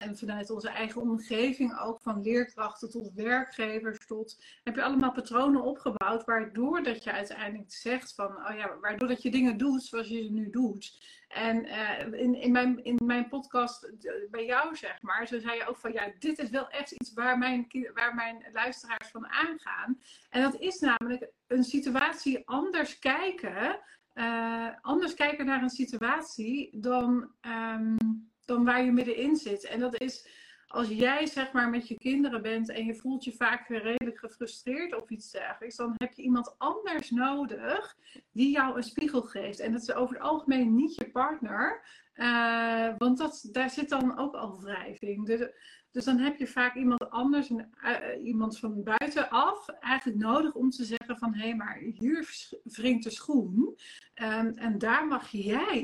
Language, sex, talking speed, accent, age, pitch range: Dutch, female, 170 wpm, Dutch, 40-59, 225-265 Hz